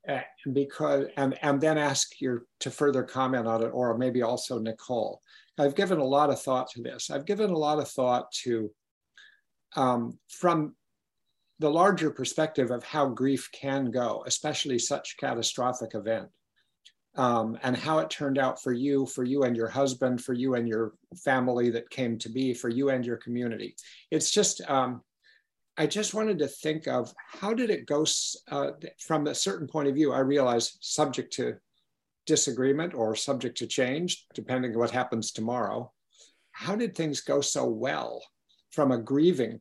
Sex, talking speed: male, 175 wpm